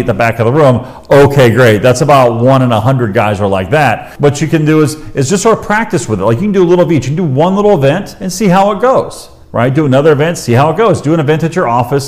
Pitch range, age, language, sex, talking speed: 120-160 Hz, 40-59, English, male, 310 wpm